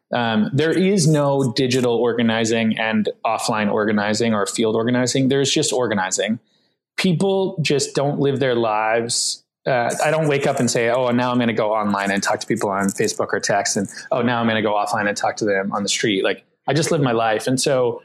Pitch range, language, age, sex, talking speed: 115-155 Hz, English, 20-39, male, 220 wpm